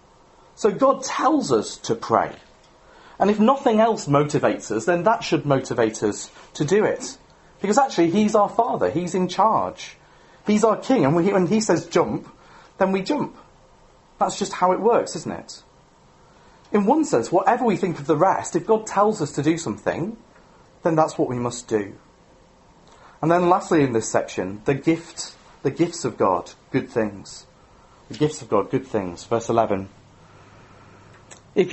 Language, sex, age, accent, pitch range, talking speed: English, male, 40-59, British, 130-195 Hz, 170 wpm